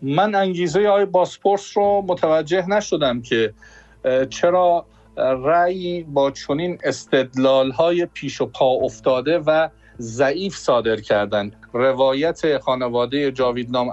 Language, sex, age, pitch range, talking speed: Persian, male, 50-69, 120-155 Hz, 105 wpm